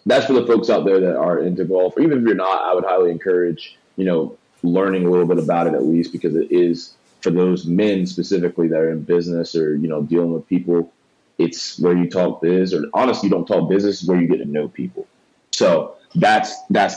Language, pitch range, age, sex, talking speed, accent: English, 85-100 Hz, 20-39, male, 235 wpm, American